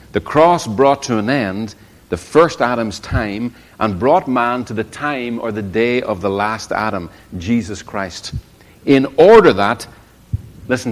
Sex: male